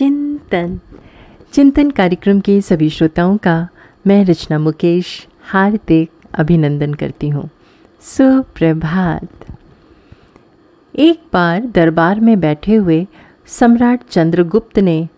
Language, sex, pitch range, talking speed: Hindi, female, 160-225 Hz, 95 wpm